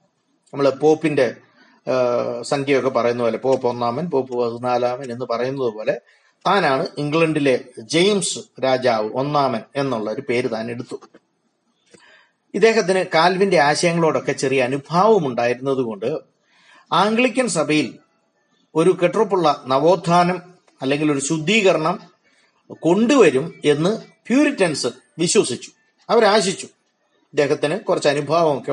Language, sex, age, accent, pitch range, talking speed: Malayalam, male, 30-49, native, 130-185 Hz, 95 wpm